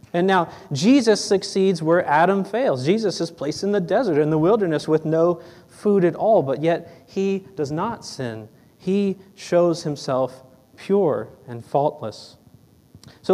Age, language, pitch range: 30-49, English, 150-205 Hz